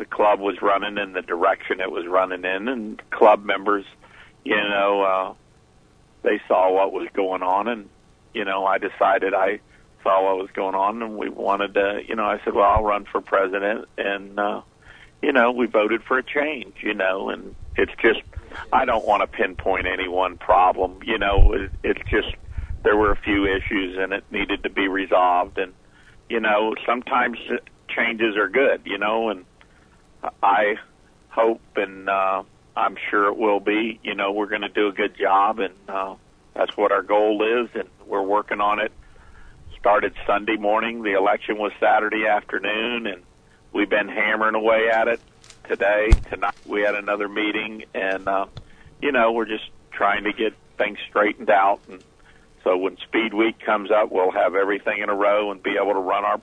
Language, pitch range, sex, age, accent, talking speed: English, 95-110 Hz, male, 50-69, American, 185 wpm